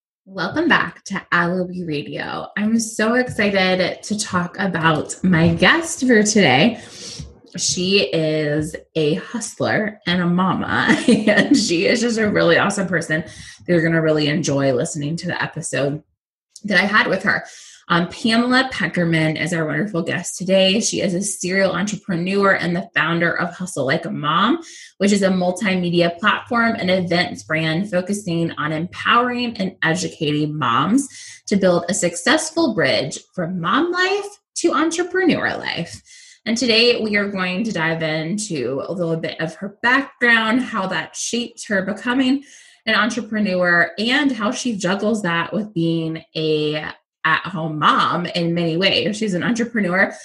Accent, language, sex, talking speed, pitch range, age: American, English, female, 150 wpm, 165-225 Hz, 20-39